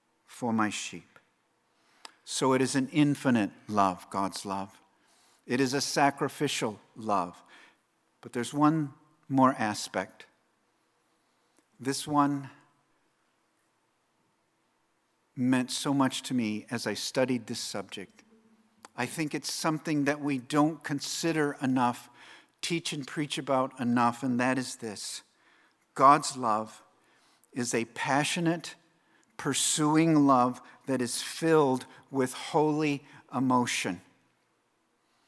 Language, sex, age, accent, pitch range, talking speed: English, male, 50-69, American, 130-160 Hz, 110 wpm